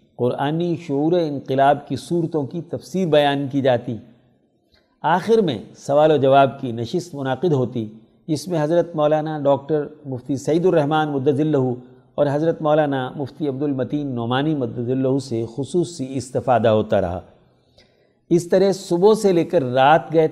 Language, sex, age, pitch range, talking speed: Urdu, male, 50-69, 130-155 Hz, 145 wpm